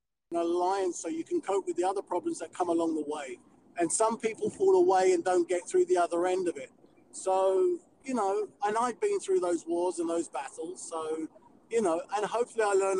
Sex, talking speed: male, 215 wpm